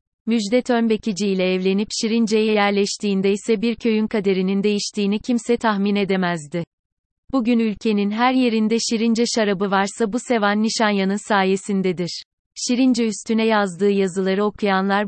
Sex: female